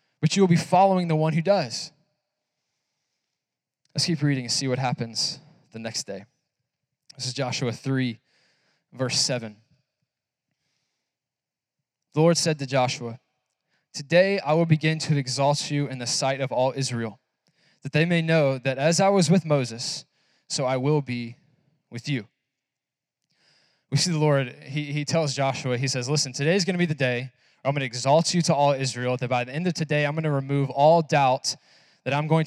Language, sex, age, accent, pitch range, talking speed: English, male, 20-39, American, 135-165 Hz, 185 wpm